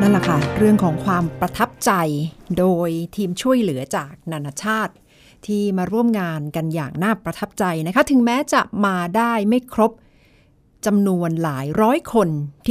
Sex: female